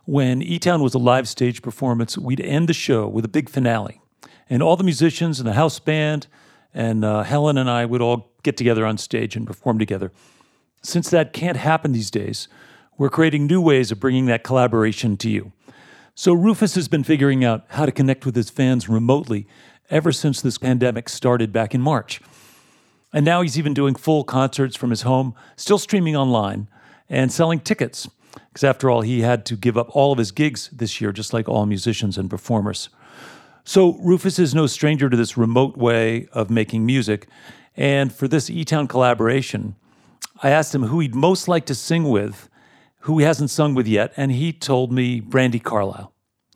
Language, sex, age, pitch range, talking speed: English, male, 50-69, 115-150 Hz, 190 wpm